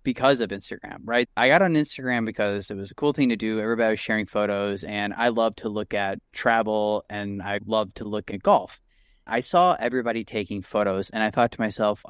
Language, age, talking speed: English, 30-49, 220 wpm